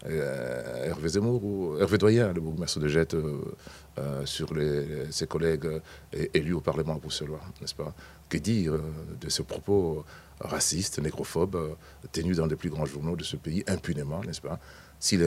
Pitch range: 75-90 Hz